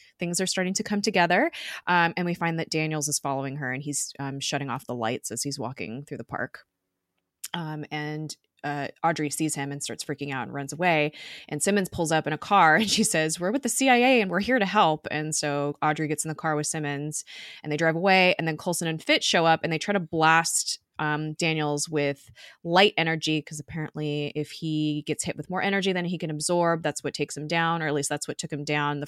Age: 20-39